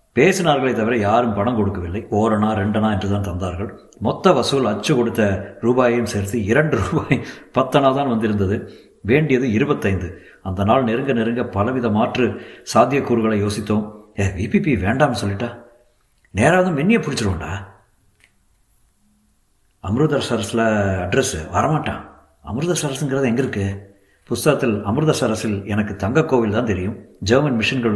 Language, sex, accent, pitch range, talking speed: Tamil, male, native, 100-120 Hz, 110 wpm